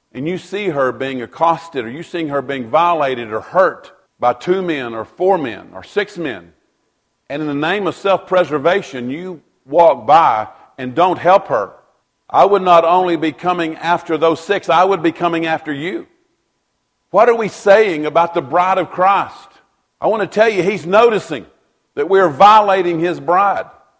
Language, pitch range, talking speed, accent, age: English, 120-175 Hz, 185 wpm, American, 50-69